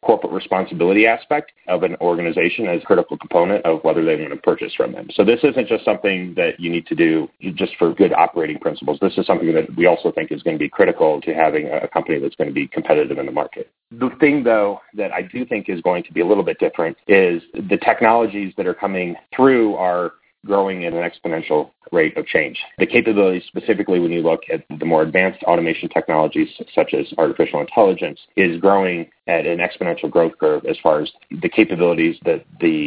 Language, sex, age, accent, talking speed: English, male, 30-49, American, 215 wpm